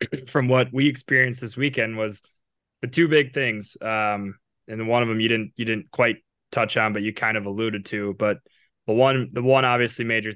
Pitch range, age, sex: 105-120 Hz, 20-39, male